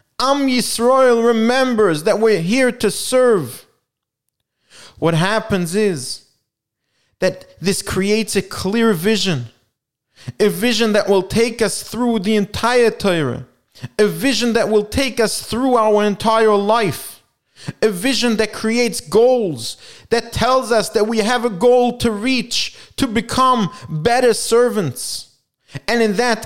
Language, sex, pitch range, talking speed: English, male, 200-240 Hz, 135 wpm